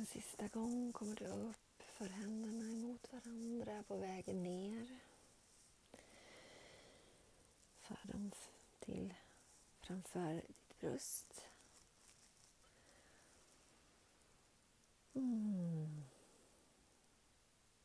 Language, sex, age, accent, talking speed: Swedish, female, 30-49, native, 65 wpm